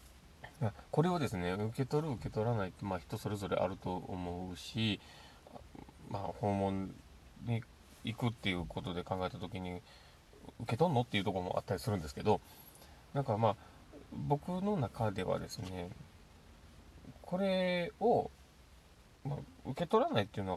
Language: Japanese